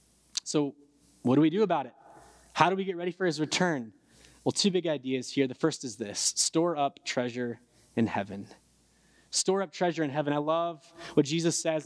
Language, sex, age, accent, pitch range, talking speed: English, male, 20-39, American, 130-180 Hz, 195 wpm